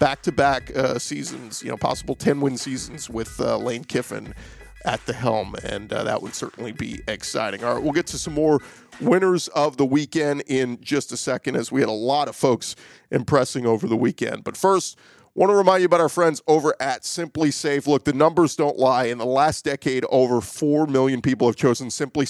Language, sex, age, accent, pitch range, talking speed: English, male, 40-59, American, 130-155 Hz, 205 wpm